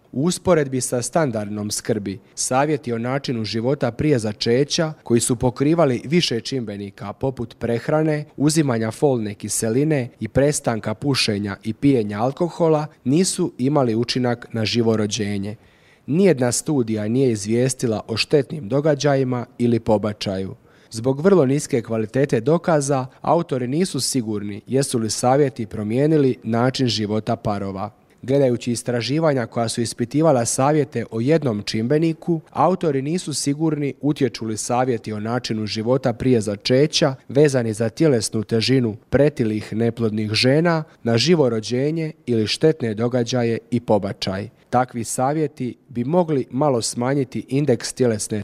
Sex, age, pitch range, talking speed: male, 30-49, 115-145 Hz, 120 wpm